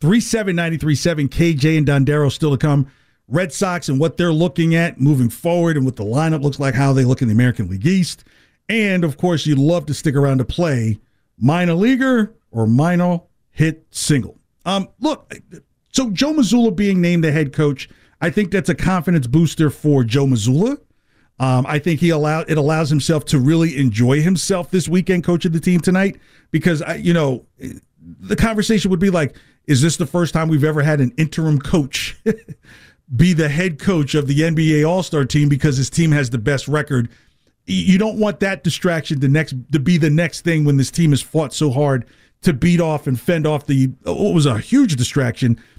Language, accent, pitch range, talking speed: English, American, 140-175 Hz, 200 wpm